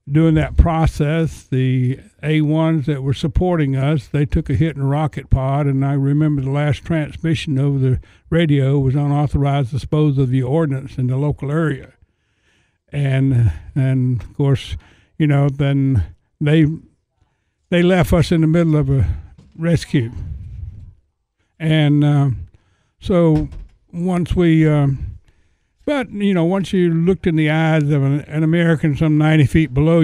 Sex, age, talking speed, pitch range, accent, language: male, 60-79, 155 wpm, 135-155 Hz, American, English